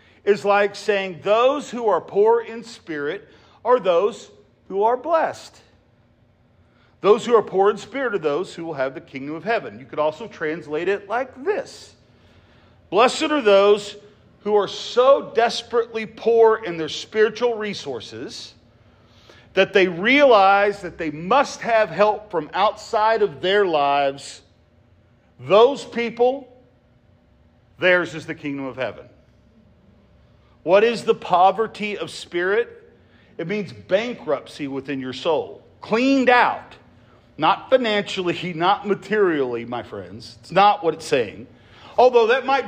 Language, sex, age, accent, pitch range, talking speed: English, male, 50-69, American, 140-225 Hz, 135 wpm